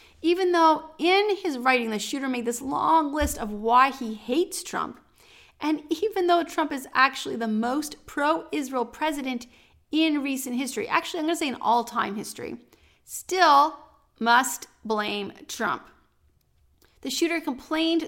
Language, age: English, 30-49